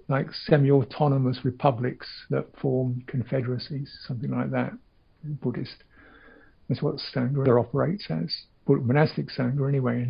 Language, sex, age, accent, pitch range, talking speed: English, male, 60-79, British, 125-155 Hz, 130 wpm